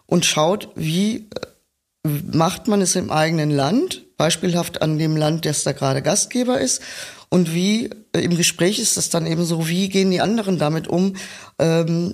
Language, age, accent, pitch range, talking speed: German, 20-39, German, 155-180 Hz, 175 wpm